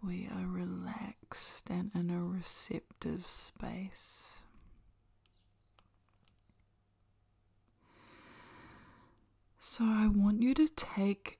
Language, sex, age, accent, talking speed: English, female, 20-39, Australian, 75 wpm